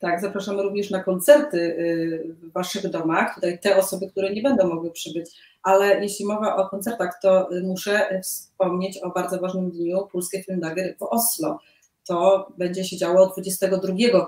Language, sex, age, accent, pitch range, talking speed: Polish, female, 30-49, native, 180-205 Hz, 155 wpm